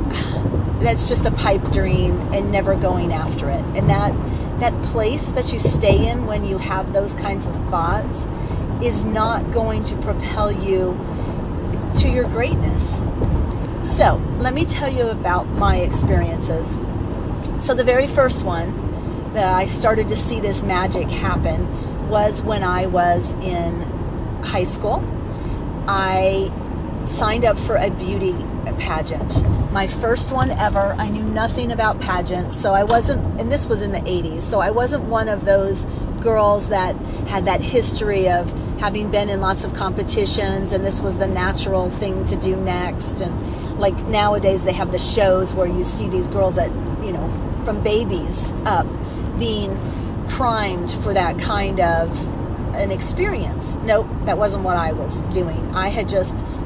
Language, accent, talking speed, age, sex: English, American, 160 wpm, 40-59, female